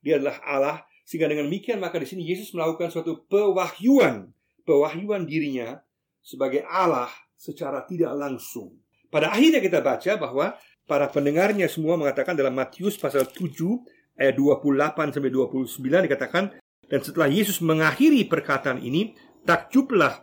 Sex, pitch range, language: male, 130-170 Hz, Indonesian